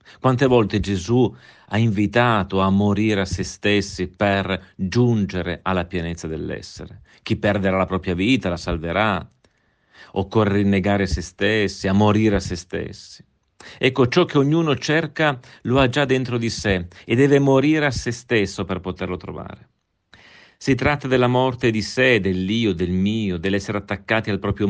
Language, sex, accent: Italian, male, native